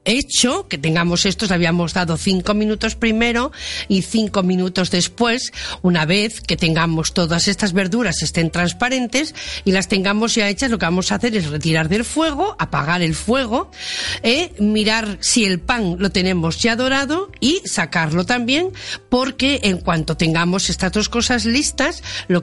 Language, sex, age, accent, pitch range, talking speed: Spanish, female, 40-59, Spanish, 175-235 Hz, 165 wpm